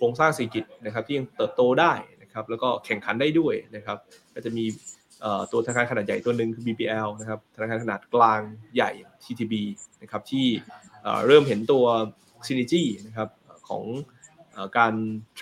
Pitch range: 110-130 Hz